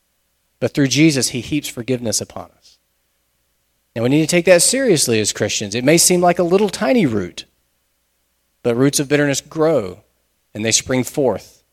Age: 40-59